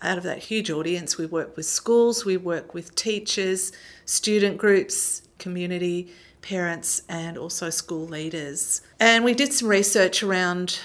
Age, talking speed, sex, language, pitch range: 50-69, 150 wpm, female, English, 170-205 Hz